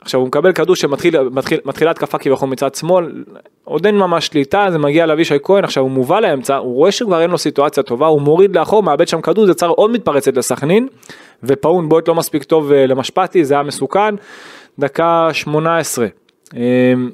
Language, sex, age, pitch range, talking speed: Hebrew, male, 20-39, 135-170 Hz, 175 wpm